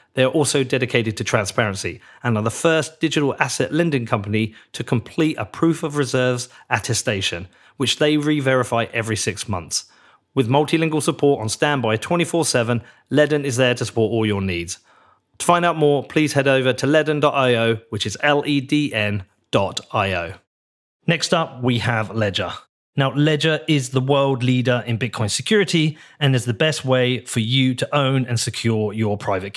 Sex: male